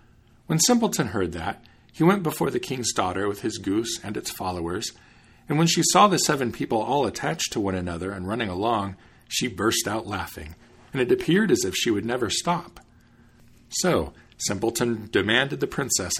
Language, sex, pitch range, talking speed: English, male, 95-130 Hz, 180 wpm